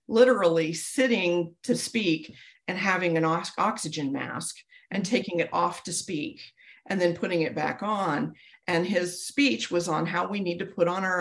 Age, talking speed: 40-59, 175 wpm